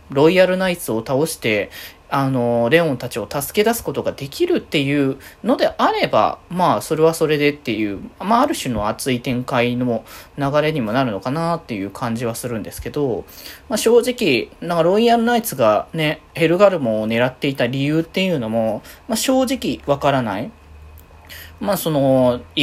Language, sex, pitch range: Japanese, male, 120-175 Hz